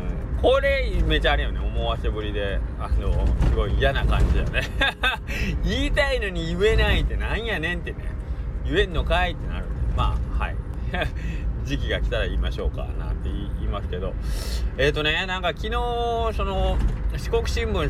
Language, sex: Japanese, male